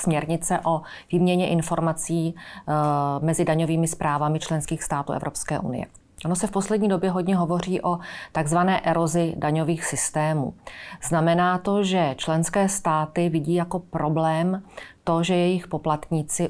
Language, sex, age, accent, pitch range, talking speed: Czech, female, 30-49, native, 160-190 Hz, 130 wpm